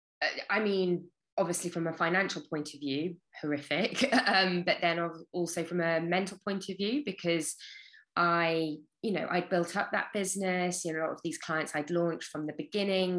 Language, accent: English, British